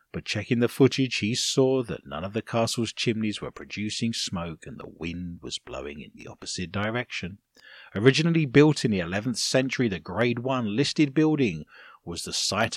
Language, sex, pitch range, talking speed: English, male, 100-135 Hz, 180 wpm